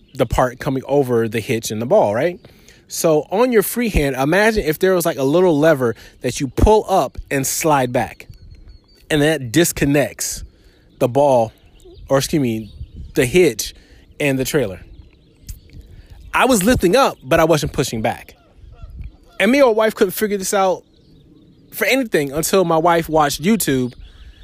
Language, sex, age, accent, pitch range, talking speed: English, male, 20-39, American, 125-180 Hz, 165 wpm